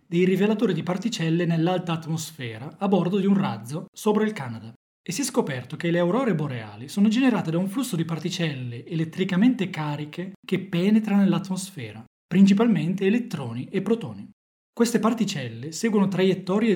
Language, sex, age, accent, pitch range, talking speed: Italian, male, 20-39, native, 150-200 Hz, 150 wpm